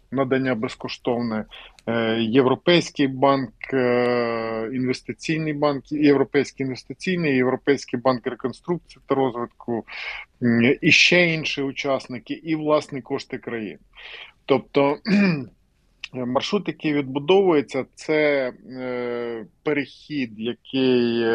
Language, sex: Ukrainian, male